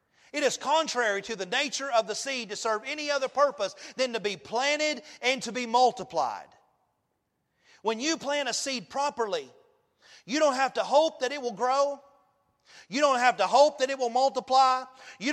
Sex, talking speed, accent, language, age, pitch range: male, 185 wpm, American, English, 40-59, 225-275 Hz